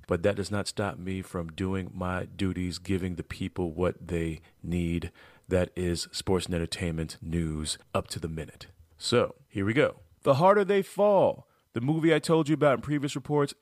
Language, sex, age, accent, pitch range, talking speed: English, male, 30-49, American, 100-145 Hz, 190 wpm